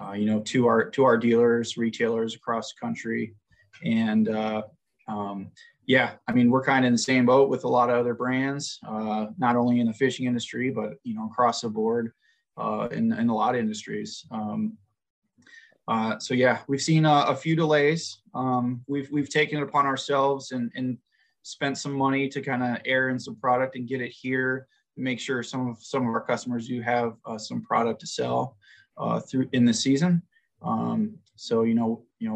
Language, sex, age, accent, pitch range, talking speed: English, male, 20-39, American, 115-140 Hz, 205 wpm